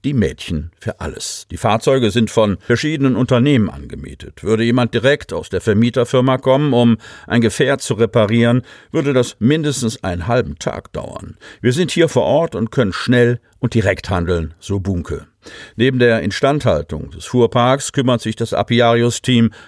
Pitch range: 95-125 Hz